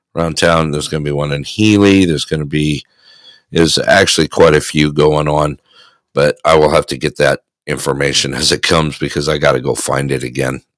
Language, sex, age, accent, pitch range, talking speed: English, male, 50-69, American, 75-95 Hz, 215 wpm